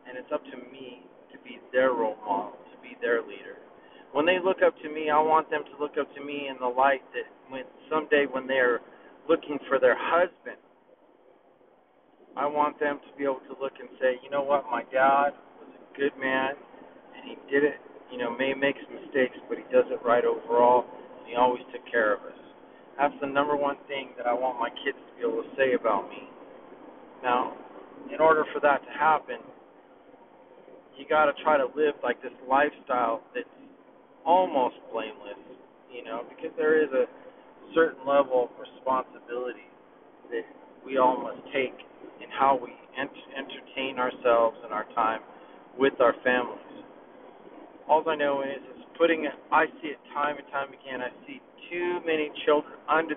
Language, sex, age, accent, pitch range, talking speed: English, male, 40-59, American, 130-165 Hz, 185 wpm